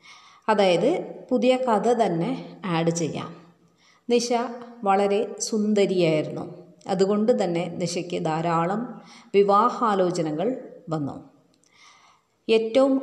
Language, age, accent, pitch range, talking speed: Malayalam, 30-49, native, 180-230 Hz, 75 wpm